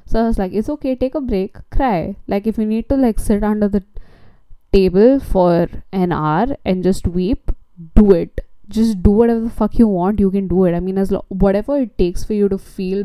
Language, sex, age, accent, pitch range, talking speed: English, female, 10-29, Indian, 170-200 Hz, 230 wpm